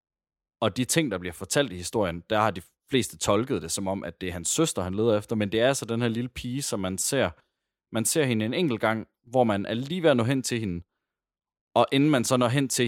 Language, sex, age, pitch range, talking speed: Danish, male, 30-49, 95-120 Hz, 255 wpm